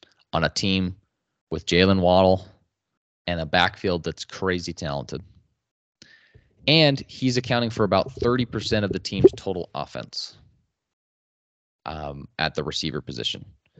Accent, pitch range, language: American, 85-115 Hz, English